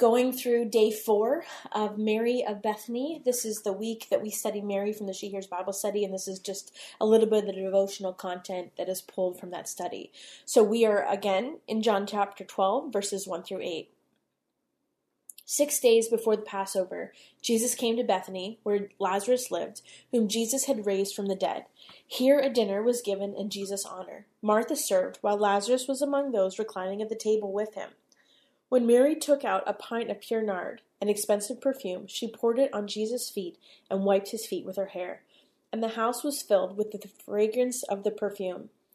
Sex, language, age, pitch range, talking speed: female, English, 20-39, 200-240 Hz, 195 wpm